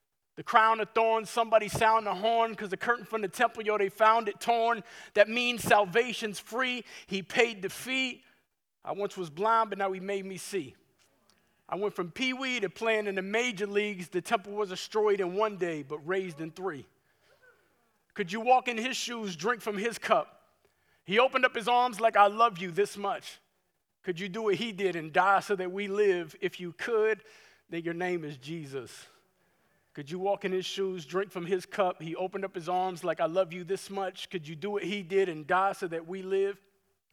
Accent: American